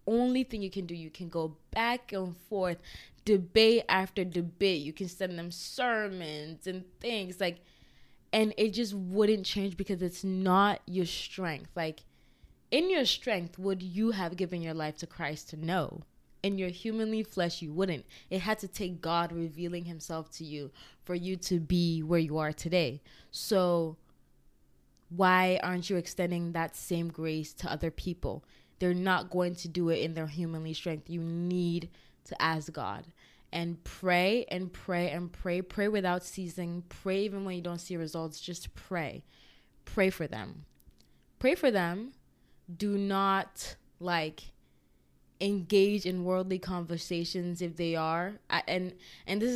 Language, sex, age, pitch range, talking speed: English, female, 20-39, 165-190 Hz, 160 wpm